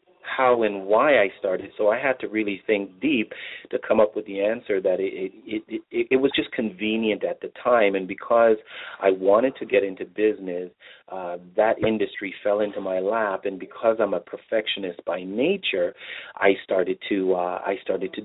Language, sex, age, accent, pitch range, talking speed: English, male, 40-59, American, 95-150 Hz, 190 wpm